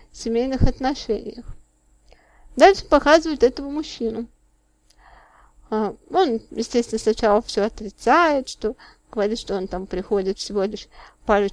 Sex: female